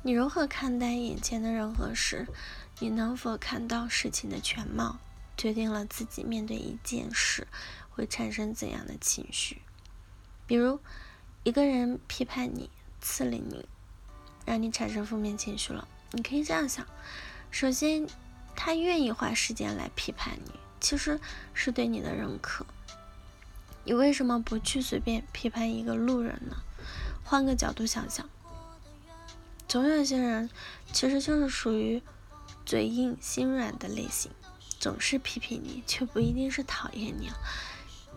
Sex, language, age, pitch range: female, Chinese, 10-29, 215-265 Hz